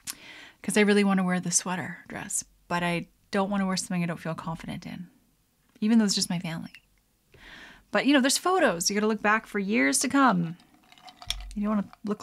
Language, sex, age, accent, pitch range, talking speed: English, female, 30-49, American, 180-245 Hz, 215 wpm